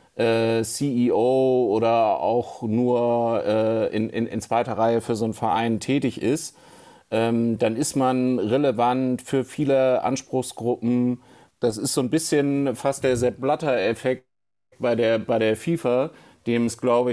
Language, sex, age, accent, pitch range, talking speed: German, male, 40-59, German, 115-125 Hz, 135 wpm